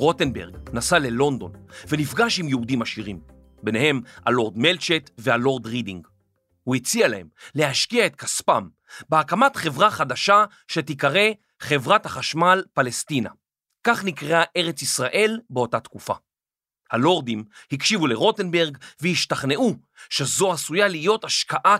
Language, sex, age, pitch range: Hebrew, male, 40-59, 130-195 Hz